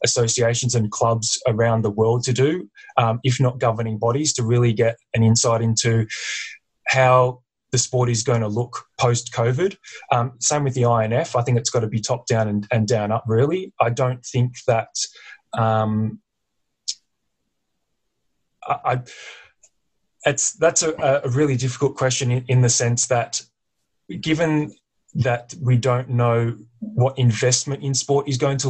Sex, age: male, 20-39